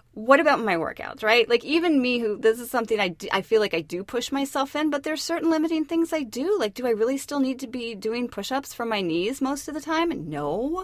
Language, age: English, 30-49